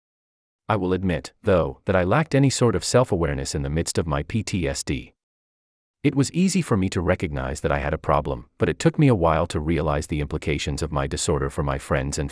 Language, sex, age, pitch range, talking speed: English, male, 40-59, 75-115 Hz, 225 wpm